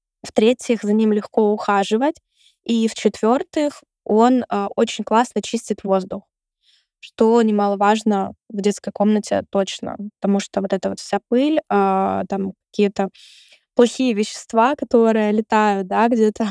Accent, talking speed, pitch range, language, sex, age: native, 125 wpm, 205-235 Hz, Russian, female, 20-39